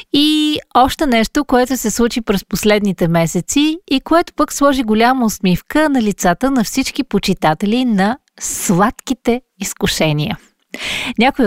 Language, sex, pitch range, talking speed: Bulgarian, female, 175-245 Hz, 125 wpm